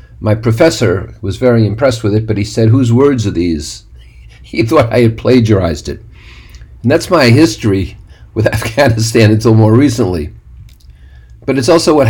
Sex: male